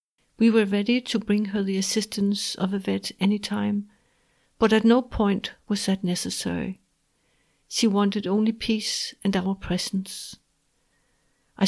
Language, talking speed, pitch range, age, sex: English, 145 wpm, 195-220 Hz, 60-79, female